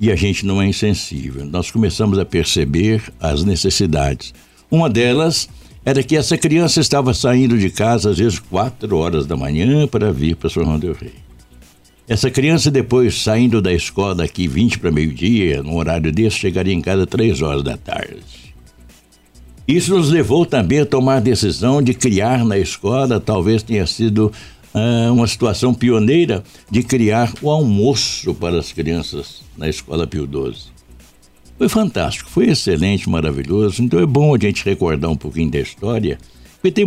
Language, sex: Portuguese, male